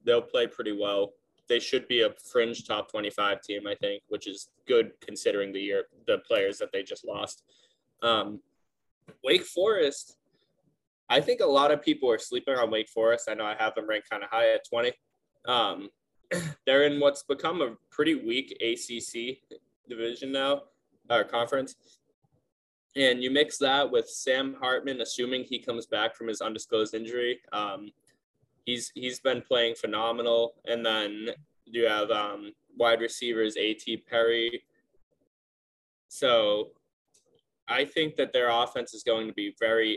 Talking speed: 160 wpm